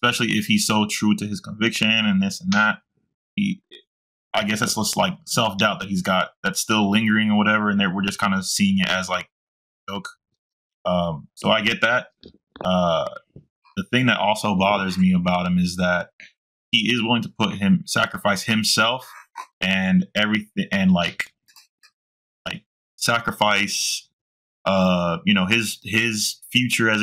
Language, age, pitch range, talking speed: English, 20-39, 105-155 Hz, 165 wpm